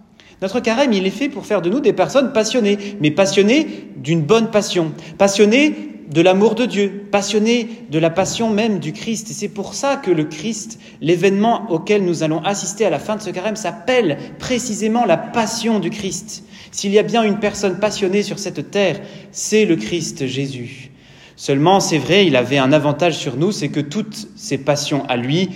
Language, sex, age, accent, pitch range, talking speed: French, male, 30-49, French, 150-205 Hz, 195 wpm